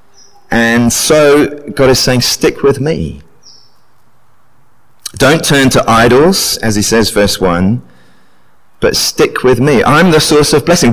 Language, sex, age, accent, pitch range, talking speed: English, male, 30-49, British, 110-140 Hz, 145 wpm